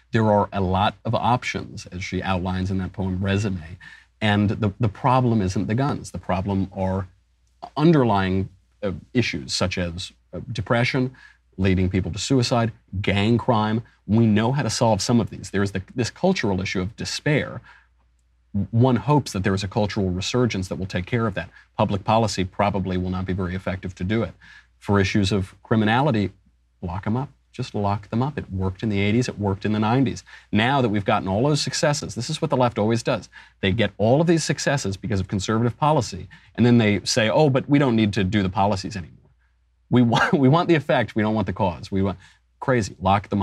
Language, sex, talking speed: English, male, 210 wpm